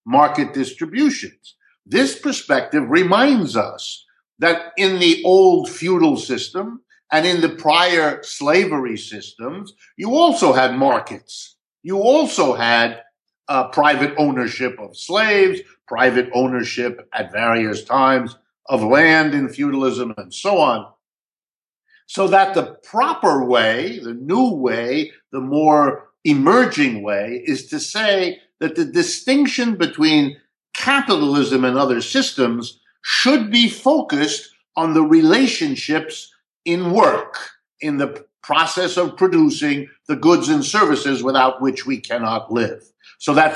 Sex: male